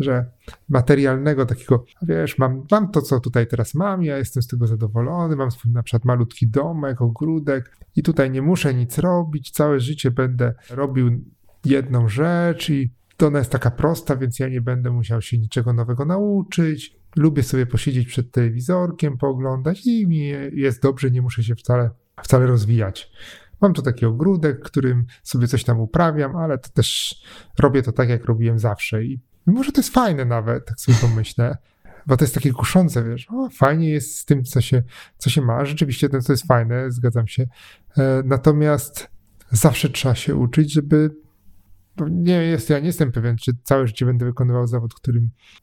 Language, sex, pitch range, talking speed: Polish, male, 120-145 Hz, 170 wpm